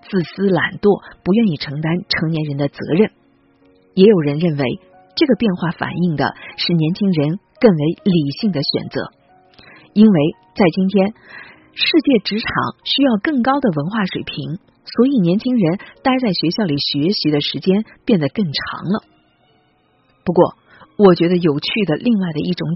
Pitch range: 150-210 Hz